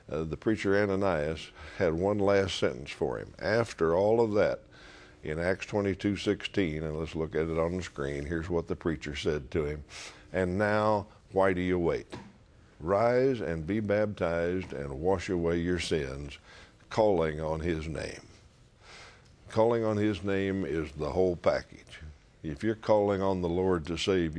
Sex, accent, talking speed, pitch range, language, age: male, American, 165 wpm, 80-100 Hz, English, 60-79